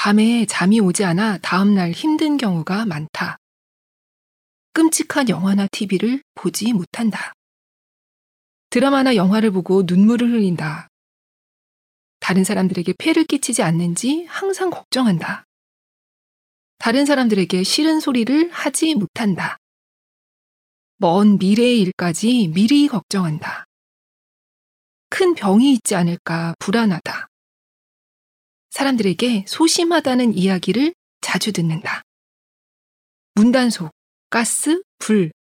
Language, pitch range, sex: Korean, 180-265 Hz, female